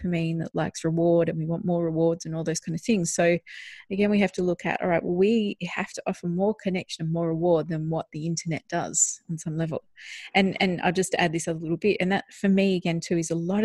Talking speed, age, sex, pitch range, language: 270 wpm, 30-49, female, 165-185 Hz, English